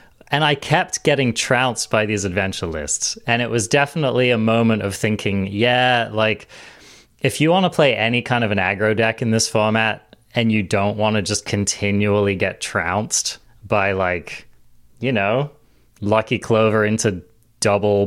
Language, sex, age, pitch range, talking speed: English, male, 20-39, 105-130 Hz, 165 wpm